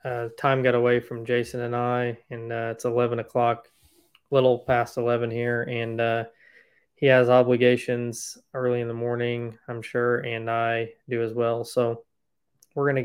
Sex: male